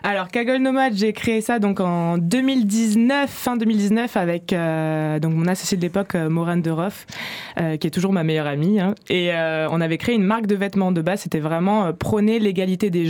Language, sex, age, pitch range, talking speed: French, female, 20-39, 170-205 Hz, 205 wpm